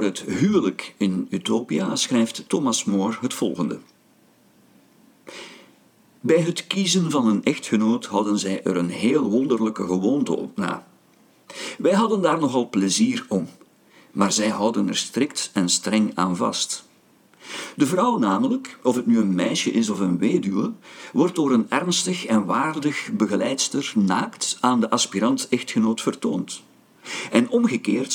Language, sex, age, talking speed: Dutch, male, 50-69, 140 wpm